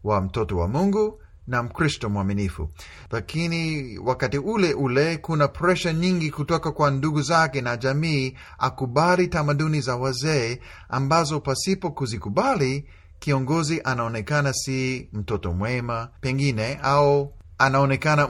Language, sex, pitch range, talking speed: Swahili, male, 110-155 Hz, 115 wpm